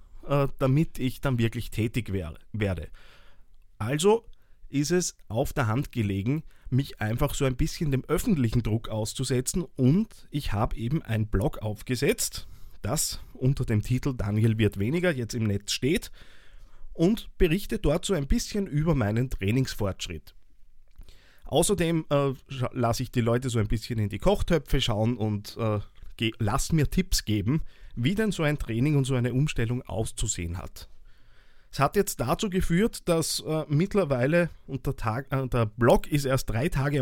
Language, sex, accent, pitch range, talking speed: German, male, Austrian, 110-150 Hz, 155 wpm